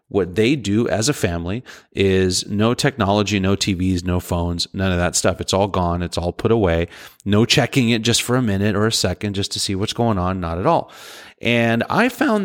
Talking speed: 220 wpm